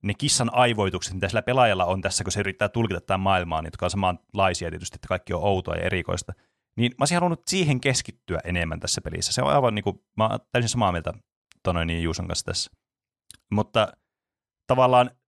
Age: 30-49